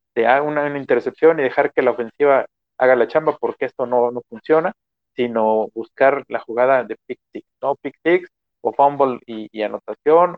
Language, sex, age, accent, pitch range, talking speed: Spanish, male, 50-69, Mexican, 115-135 Hz, 170 wpm